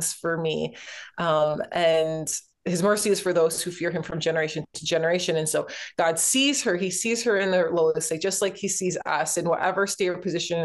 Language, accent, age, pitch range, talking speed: English, American, 20-39, 165-190 Hz, 215 wpm